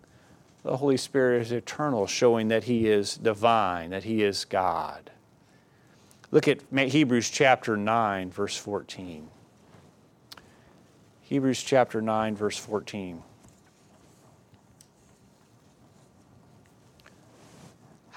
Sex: male